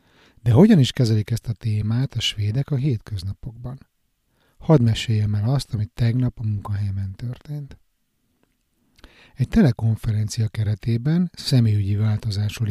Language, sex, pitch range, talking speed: Hungarian, male, 105-130 Hz, 120 wpm